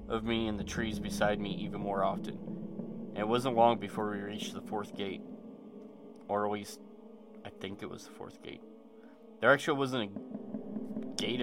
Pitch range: 95-130 Hz